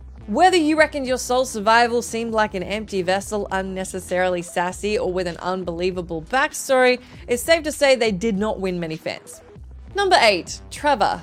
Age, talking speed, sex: 20-39, 165 wpm, female